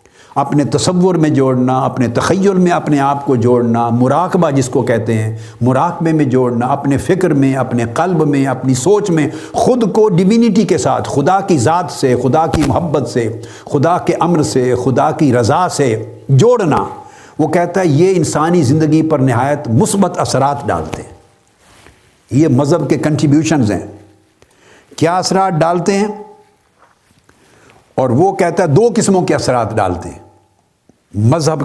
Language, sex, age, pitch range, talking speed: Urdu, male, 60-79, 120-175 Hz, 155 wpm